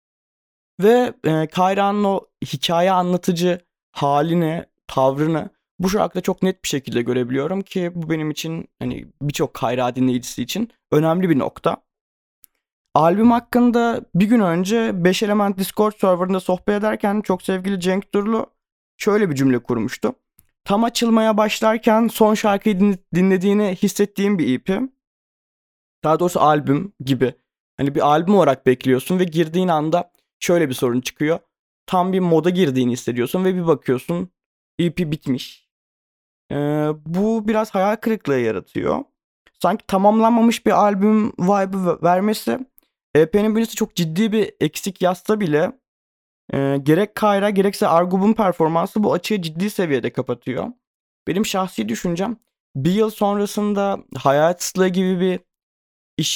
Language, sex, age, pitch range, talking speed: Turkish, male, 20-39, 155-205 Hz, 130 wpm